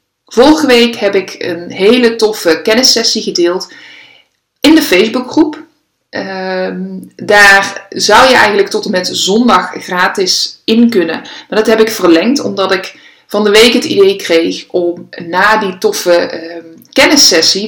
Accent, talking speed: Dutch, 145 wpm